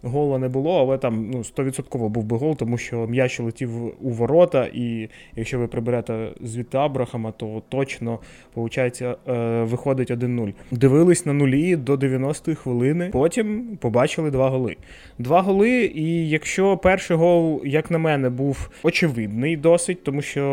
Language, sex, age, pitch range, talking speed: Ukrainian, male, 20-39, 125-155 Hz, 150 wpm